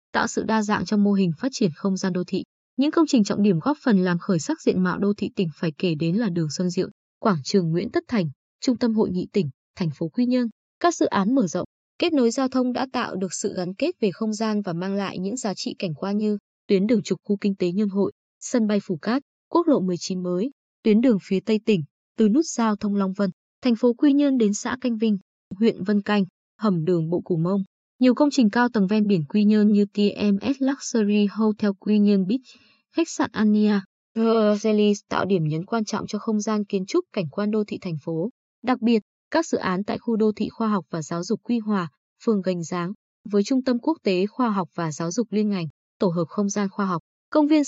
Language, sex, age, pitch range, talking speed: Vietnamese, female, 20-39, 190-240 Hz, 245 wpm